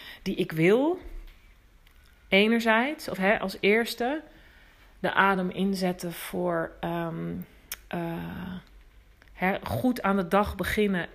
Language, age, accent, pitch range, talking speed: Dutch, 40-59, Dutch, 160-190 Hz, 90 wpm